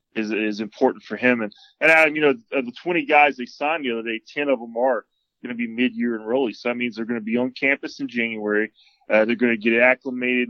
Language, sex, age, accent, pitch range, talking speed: English, male, 20-39, American, 115-135 Hz, 245 wpm